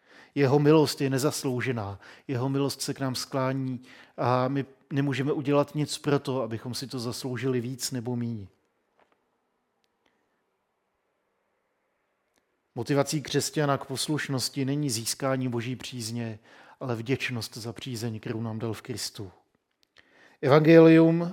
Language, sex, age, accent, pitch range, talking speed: Czech, male, 40-59, native, 120-145 Hz, 115 wpm